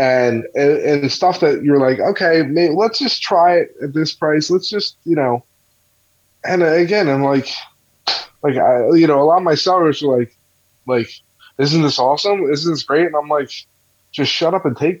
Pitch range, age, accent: 120-150 Hz, 20-39, American